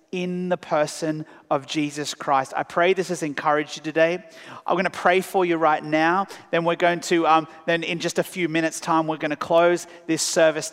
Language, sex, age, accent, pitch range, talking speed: English, male, 30-49, Australian, 155-185 Hz, 220 wpm